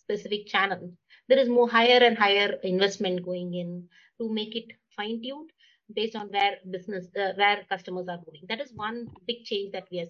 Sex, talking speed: female, 195 wpm